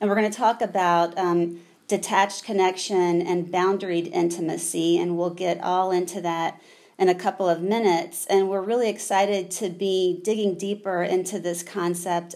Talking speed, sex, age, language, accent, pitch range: 160 wpm, female, 30-49, English, American, 175-200 Hz